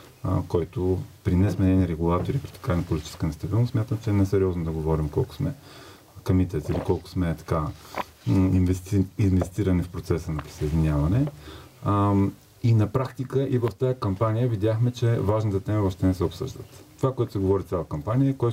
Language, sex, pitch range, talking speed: Bulgarian, male, 95-115 Hz, 160 wpm